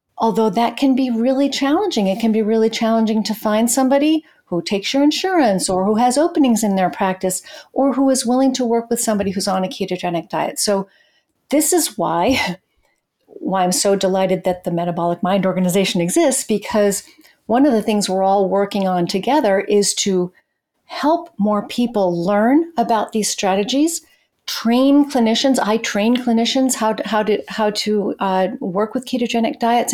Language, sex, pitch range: English, female, 205-265 Hz